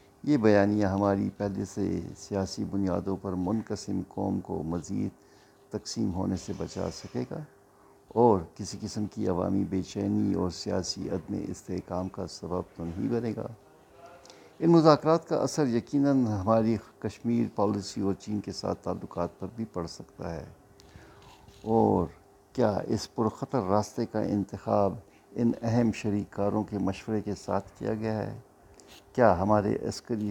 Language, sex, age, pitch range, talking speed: Urdu, male, 60-79, 95-115 Hz, 145 wpm